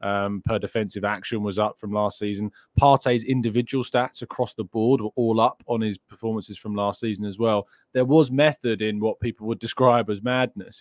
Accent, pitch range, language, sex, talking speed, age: British, 105-130 Hz, English, male, 200 wpm, 20-39